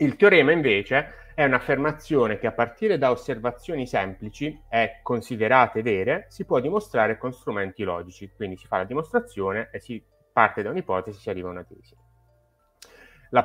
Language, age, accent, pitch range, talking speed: Italian, 30-49, native, 100-130 Hz, 165 wpm